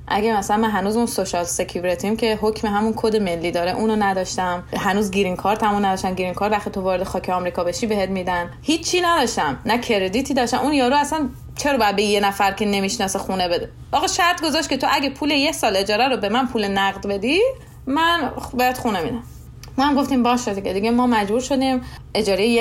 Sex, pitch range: female, 195-270 Hz